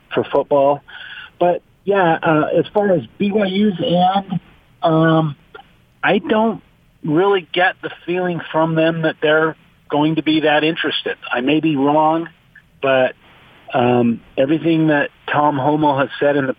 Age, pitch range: 40-59, 125-165 Hz